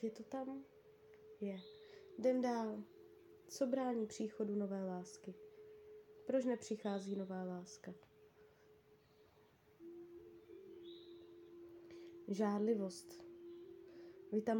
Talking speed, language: 75 wpm, Czech